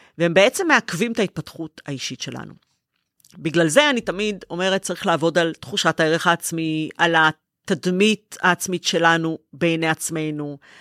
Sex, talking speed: female, 135 wpm